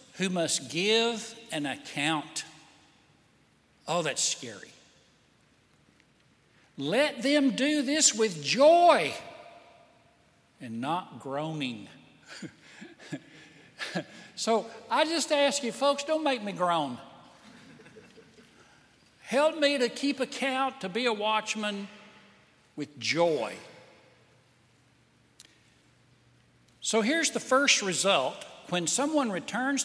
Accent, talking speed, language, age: American, 90 wpm, English, 60-79